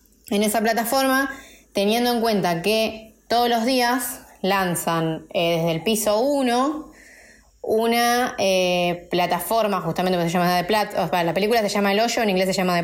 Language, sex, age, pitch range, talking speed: Spanish, female, 20-39, 175-225 Hz, 170 wpm